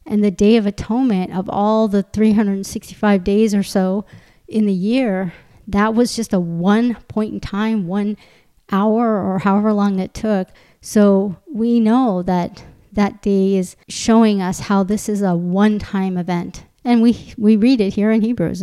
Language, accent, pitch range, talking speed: English, American, 190-225 Hz, 170 wpm